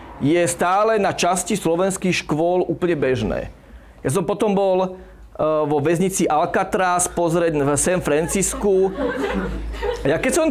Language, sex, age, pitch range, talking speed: Slovak, male, 40-59, 155-215 Hz, 125 wpm